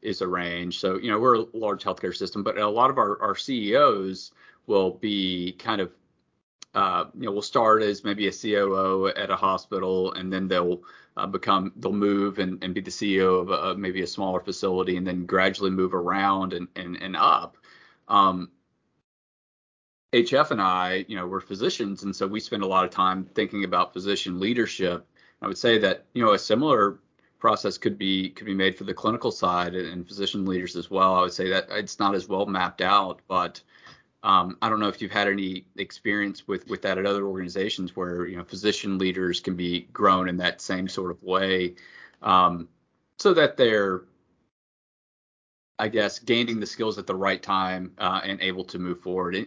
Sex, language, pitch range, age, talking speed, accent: male, English, 90-100 Hz, 30-49, 195 wpm, American